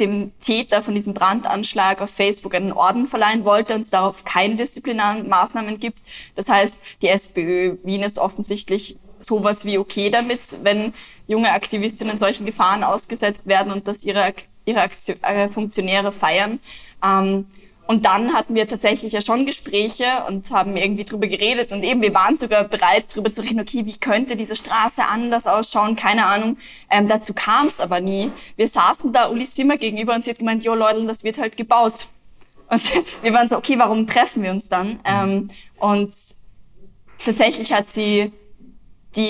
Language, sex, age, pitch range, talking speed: German, female, 20-39, 195-225 Hz, 175 wpm